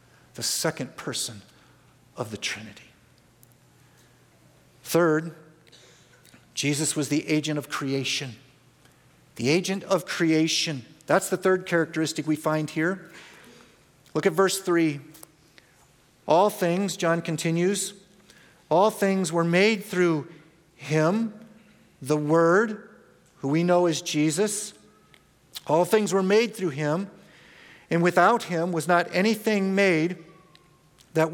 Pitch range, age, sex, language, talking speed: 155-205 Hz, 50-69, male, English, 115 wpm